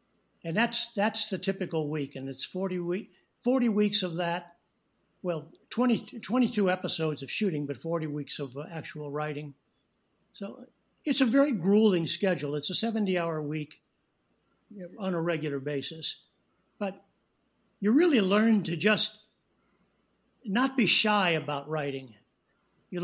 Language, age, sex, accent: English, 60-79, male, American